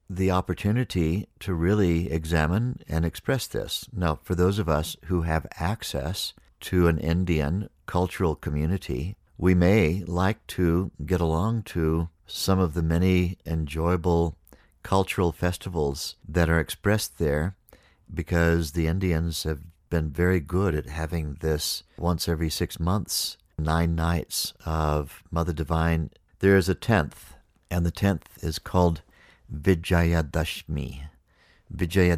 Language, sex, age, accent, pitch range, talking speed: English, male, 60-79, American, 75-90 Hz, 130 wpm